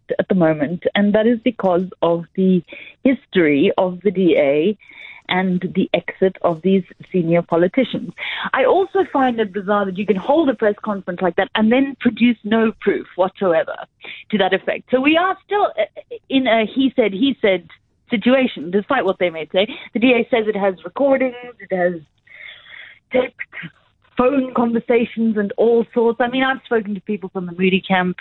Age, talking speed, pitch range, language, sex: 30-49, 175 wpm, 180-255 Hz, English, female